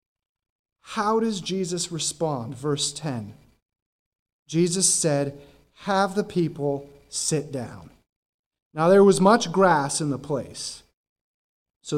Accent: American